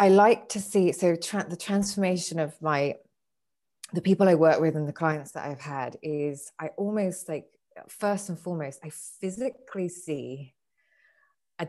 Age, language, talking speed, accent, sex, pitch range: 20-39, English, 165 wpm, British, female, 145-180 Hz